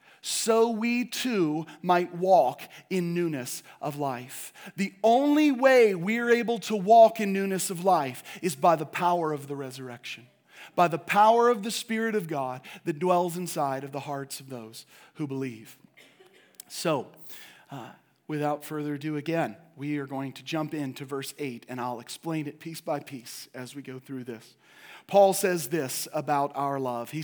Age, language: 40-59, English